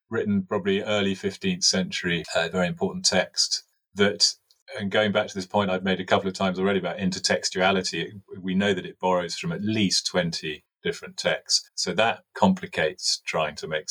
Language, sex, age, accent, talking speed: English, male, 30-49, British, 180 wpm